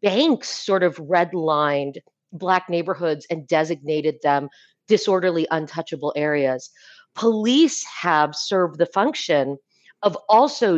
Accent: American